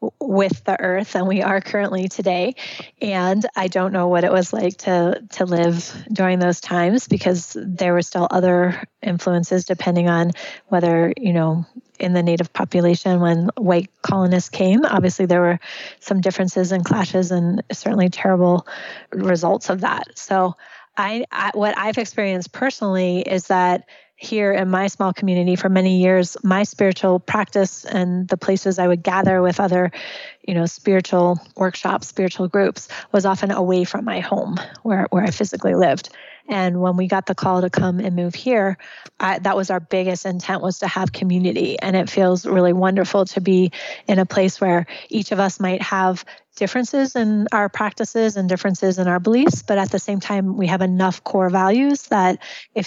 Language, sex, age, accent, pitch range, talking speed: English, female, 20-39, American, 180-195 Hz, 180 wpm